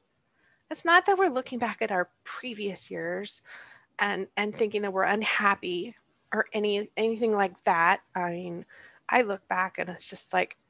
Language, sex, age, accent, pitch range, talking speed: English, female, 20-39, American, 180-240 Hz, 170 wpm